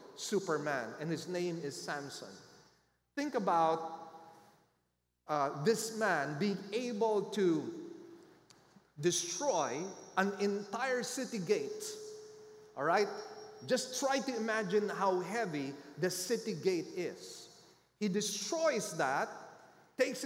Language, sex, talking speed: English, male, 100 wpm